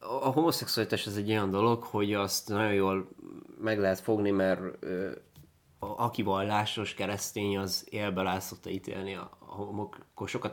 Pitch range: 95-110 Hz